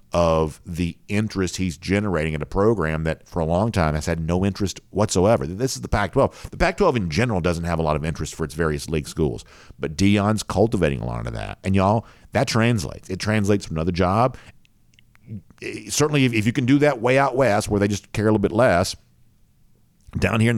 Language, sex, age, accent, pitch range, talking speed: English, male, 50-69, American, 85-110 Hz, 215 wpm